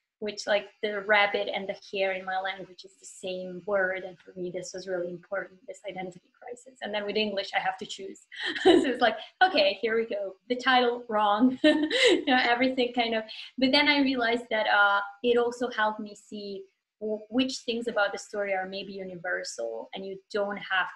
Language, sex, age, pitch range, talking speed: English, female, 20-39, 190-240 Hz, 205 wpm